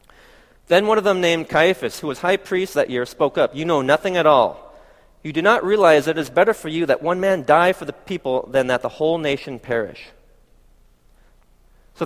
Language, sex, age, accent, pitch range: Korean, male, 40-59, American, 130-185 Hz